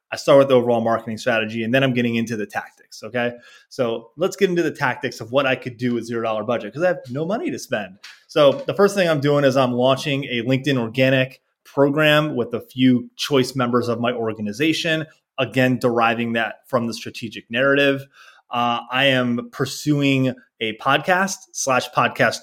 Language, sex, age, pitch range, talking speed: English, male, 20-39, 120-145 Hz, 195 wpm